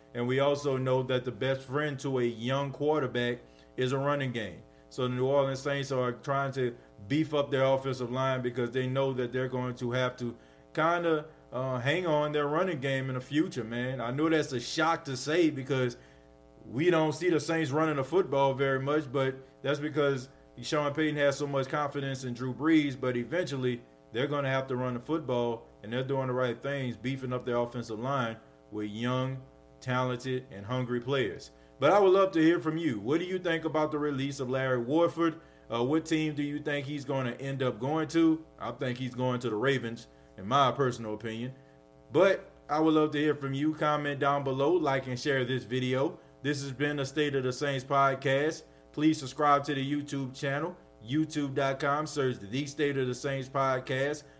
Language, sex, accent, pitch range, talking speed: English, male, American, 125-145 Hz, 205 wpm